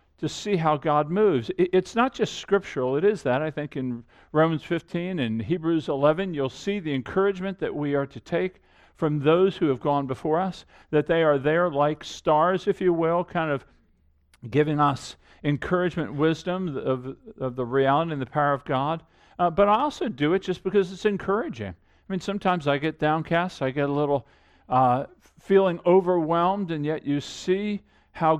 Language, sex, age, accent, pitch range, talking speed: English, male, 50-69, American, 140-190 Hz, 185 wpm